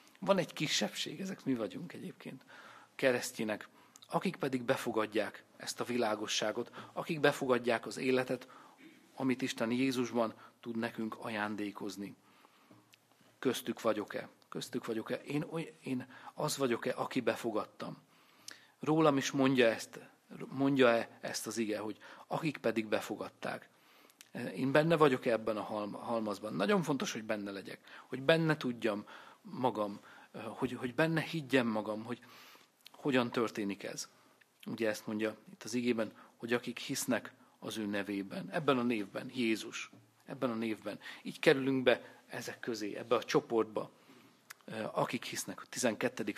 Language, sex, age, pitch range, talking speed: Hungarian, male, 40-59, 110-135 Hz, 130 wpm